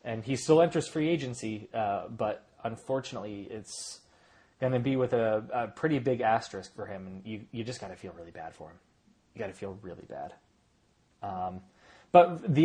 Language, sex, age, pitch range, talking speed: English, male, 20-39, 110-145 Hz, 195 wpm